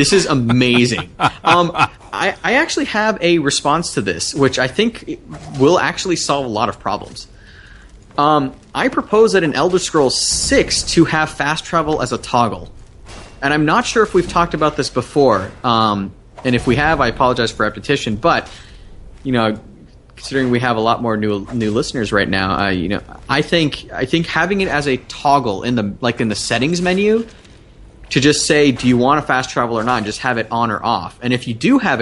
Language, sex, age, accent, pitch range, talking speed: English, male, 30-49, American, 105-145 Hz, 210 wpm